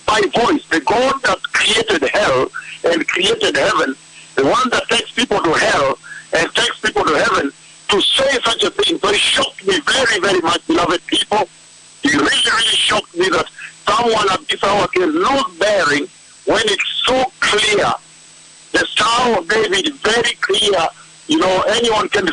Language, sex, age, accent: English, male, 60-79, American